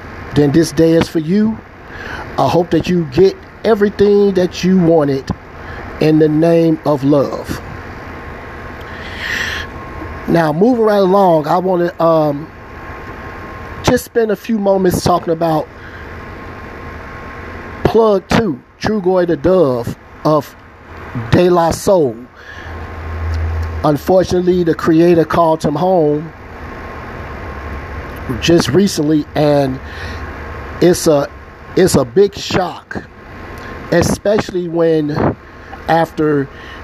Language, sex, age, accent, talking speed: English, male, 50-69, American, 105 wpm